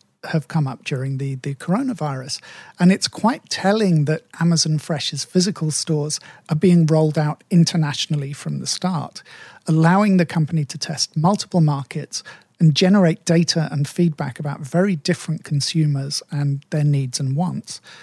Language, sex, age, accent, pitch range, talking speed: English, male, 40-59, British, 150-180 Hz, 150 wpm